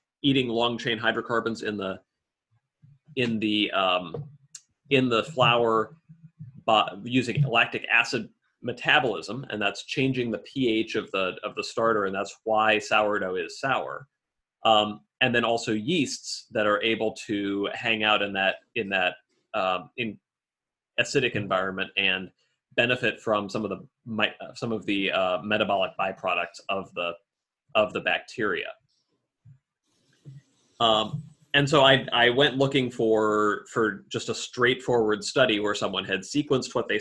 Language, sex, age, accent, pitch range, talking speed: English, male, 30-49, American, 105-130 Hz, 145 wpm